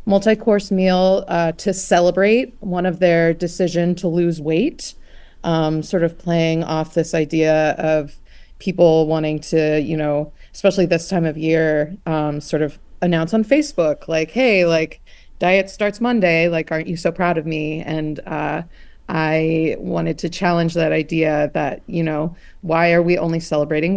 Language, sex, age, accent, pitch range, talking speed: English, female, 30-49, American, 155-185 Hz, 165 wpm